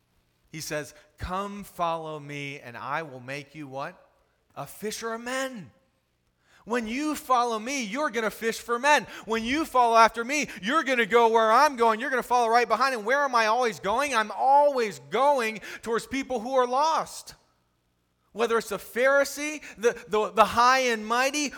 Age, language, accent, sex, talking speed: 30-49, English, American, male, 185 wpm